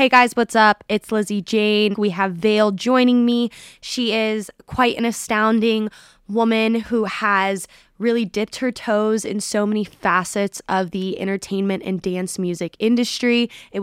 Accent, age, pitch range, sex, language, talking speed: American, 20-39, 185-215 Hz, female, English, 155 wpm